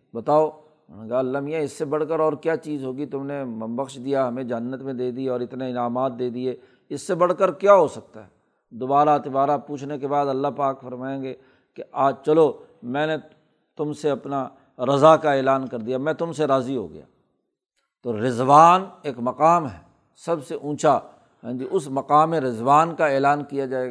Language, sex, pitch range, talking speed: Urdu, male, 130-160 Hz, 190 wpm